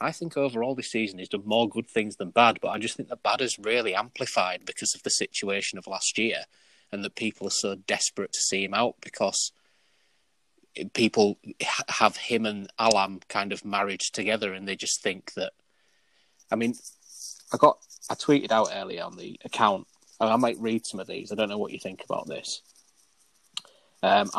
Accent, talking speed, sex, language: British, 195 wpm, male, English